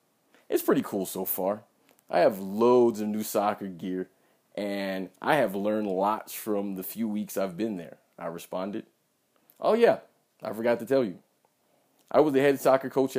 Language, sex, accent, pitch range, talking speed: English, male, American, 100-130 Hz, 180 wpm